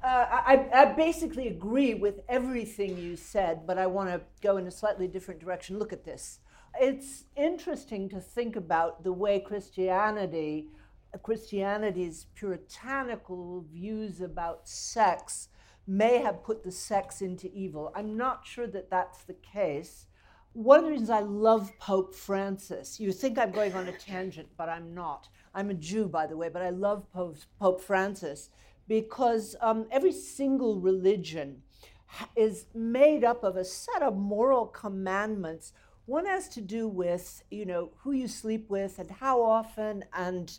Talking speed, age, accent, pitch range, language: 160 wpm, 60-79, American, 180-235 Hz, English